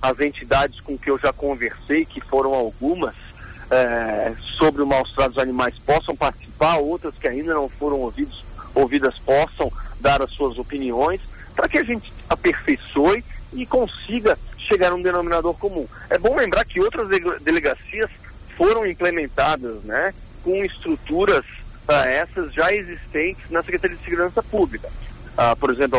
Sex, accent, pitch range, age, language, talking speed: male, Brazilian, 125-180 Hz, 50-69, Portuguese, 150 wpm